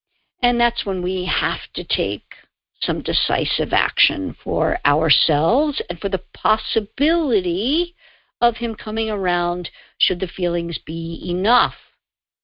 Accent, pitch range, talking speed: American, 175-240 Hz, 120 wpm